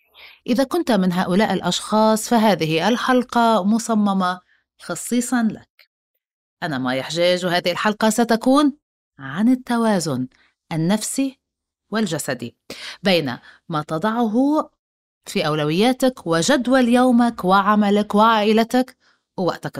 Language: Arabic